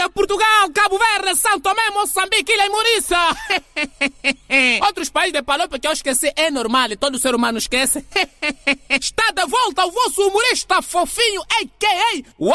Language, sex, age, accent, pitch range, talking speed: Portuguese, male, 20-39, Brazilian, 275-385 Hz, 155 wpm